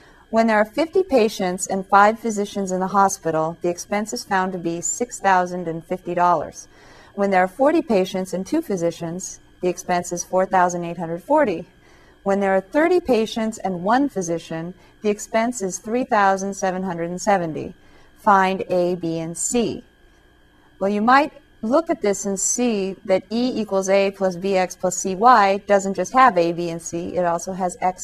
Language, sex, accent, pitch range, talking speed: English, female, American, 180-220 Hz, 160 wpm